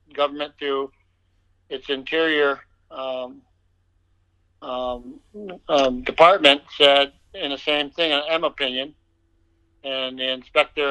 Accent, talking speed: American, 105 wpm